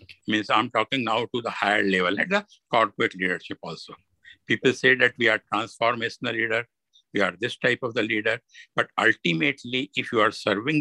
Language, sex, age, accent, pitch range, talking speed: English, male, 60-79, Indian, 110-135 Hz, 185 wpm